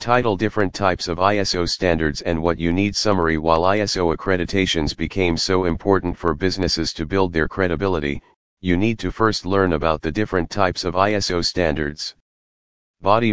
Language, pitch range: English, 80-95 Hz